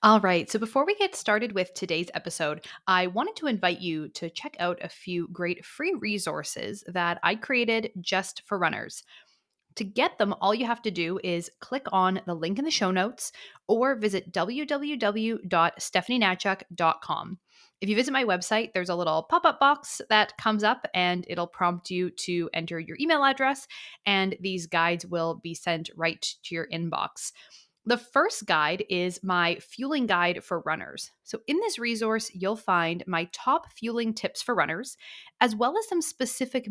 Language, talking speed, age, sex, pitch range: English, 175 wpm, 20-39, female, 180-250 Hz